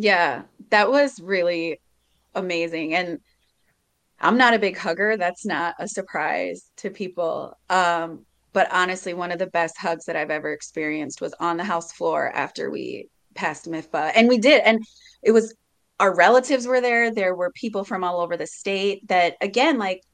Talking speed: 175 wpm